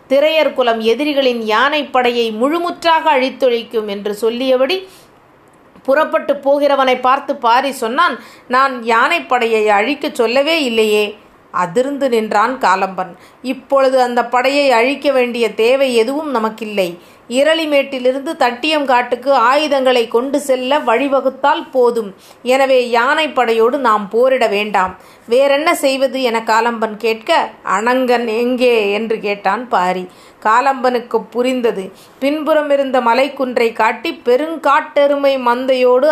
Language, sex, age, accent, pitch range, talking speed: Tamil, female, 30-49, native, 235-285 Hz, 105 wpm